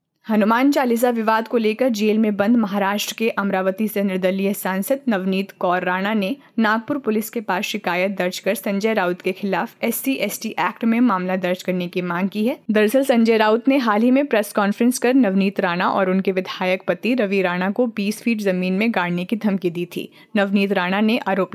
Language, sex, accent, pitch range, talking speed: Hindi, female, native, 190-235 Hz, 200 wpm